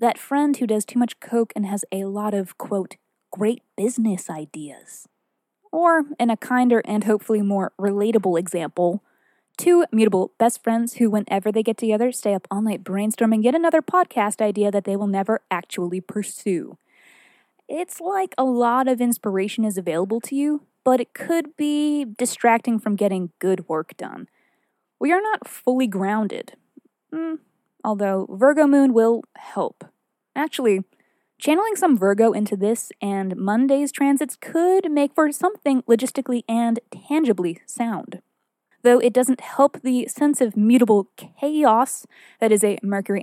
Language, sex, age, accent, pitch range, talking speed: English, female, 20-39, American, 205-265 Hz, 155 wpm